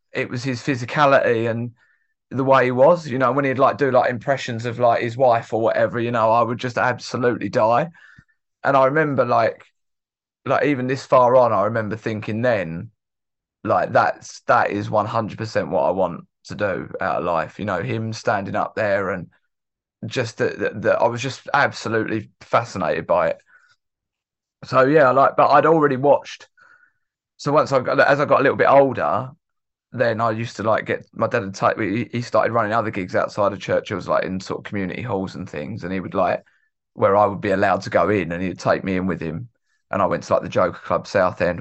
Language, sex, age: English, male, 20-39